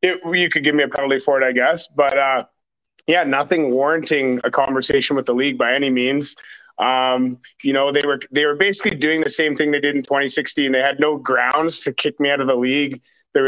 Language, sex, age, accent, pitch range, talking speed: English, male, 30-49, American, 135-155 Hz, 225 wpm